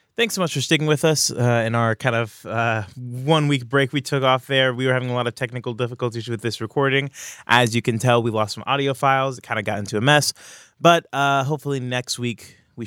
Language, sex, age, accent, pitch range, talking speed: English, male, 20-39, American, 110-140 Hz, 245 wpm